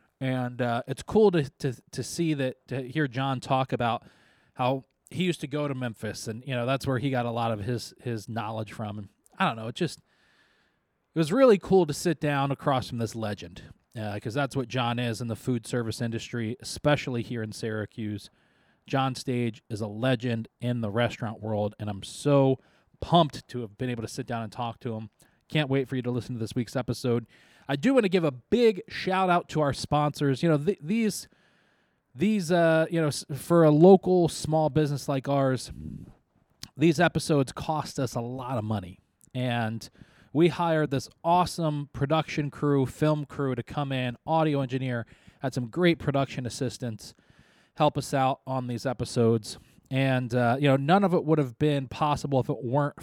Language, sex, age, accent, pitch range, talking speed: English, male, 20-39, American, 120-150 Hz, 195 wpm